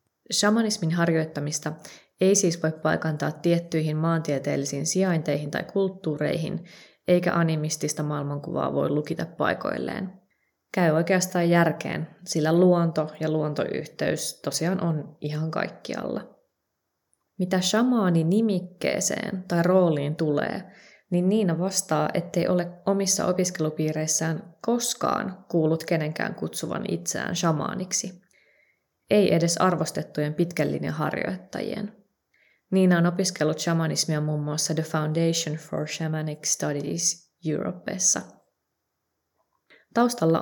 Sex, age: female, 20-39